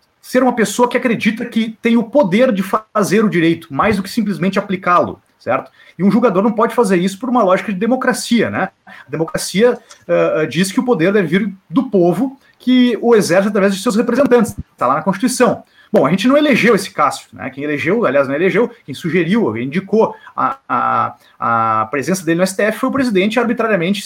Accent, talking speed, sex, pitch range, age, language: Brazilian, 205 wpm, male, 180-235 Hz, 30-49, Portuguese